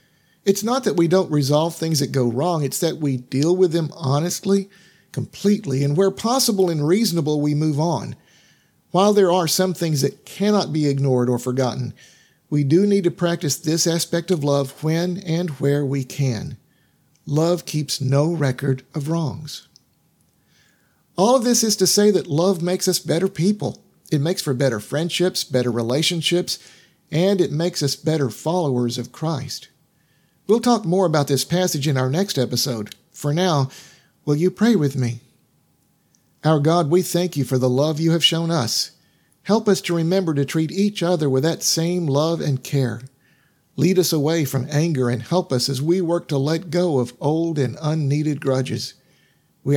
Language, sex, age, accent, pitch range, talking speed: English, male, 50-69, American, 140-180 Hz, 175 wpm